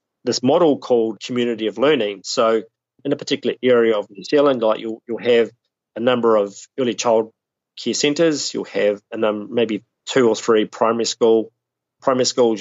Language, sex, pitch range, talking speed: English, male, 110-130 Hz, 175 wpm